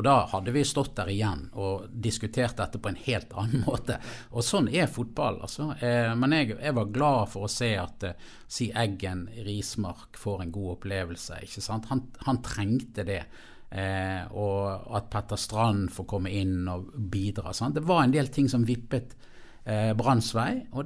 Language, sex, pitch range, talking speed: English, male, 100-125 Hz, 180 wpm